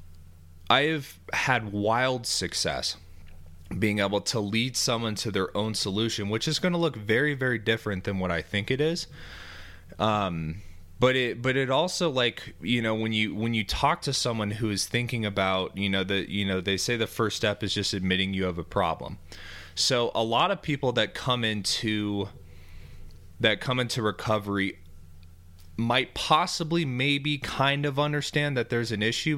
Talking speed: 175 wpm